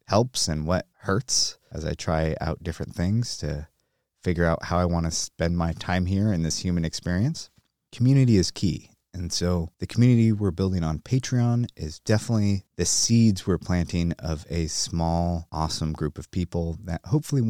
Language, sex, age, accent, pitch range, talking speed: English, male, 30-49, American, 85-115 Hz, 175 wpm